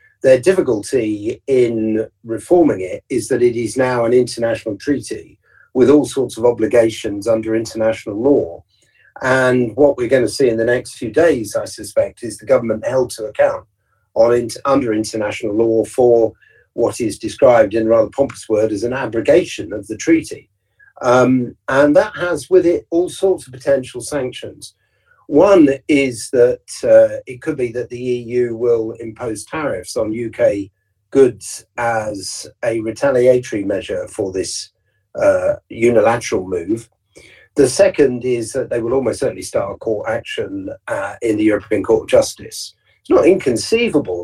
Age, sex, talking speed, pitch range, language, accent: 50-69, male, 155 wpm, 115-185 Hz, English, British